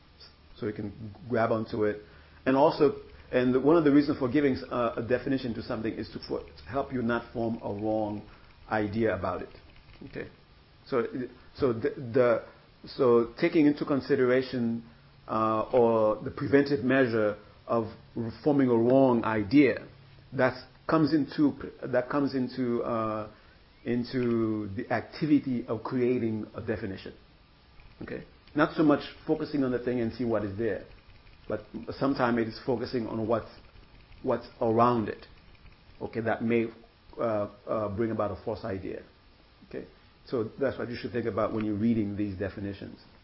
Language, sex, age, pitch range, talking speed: English, male, 50-69, 105-130 Hz, 155 wpm